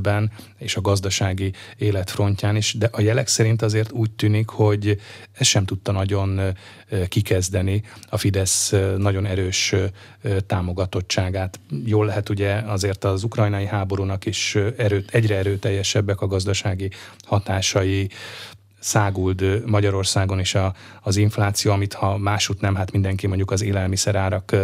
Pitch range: 95-105 Hz